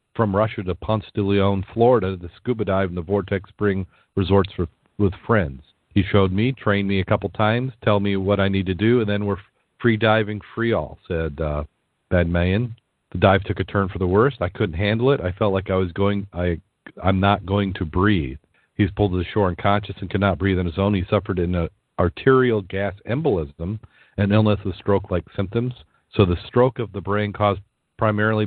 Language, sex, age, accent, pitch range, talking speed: English, male, 40-59, American, 95-110 Hz, 215 wpm